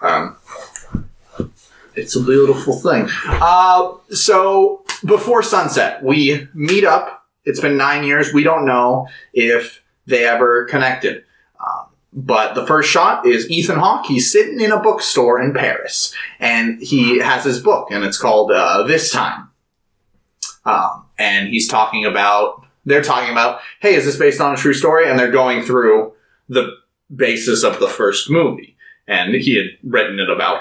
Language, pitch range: English, 120-190 Hz